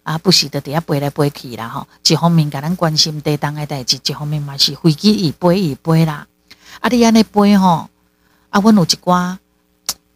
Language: Chinese